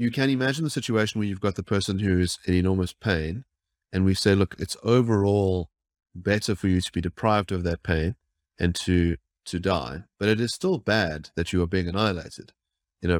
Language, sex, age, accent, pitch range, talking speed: English, male, 30-49, Australian, 90-110 Hz, 200 wpm